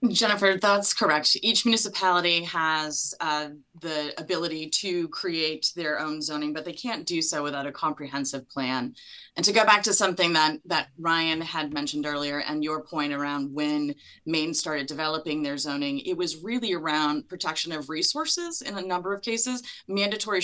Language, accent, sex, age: English, American, female, 20-39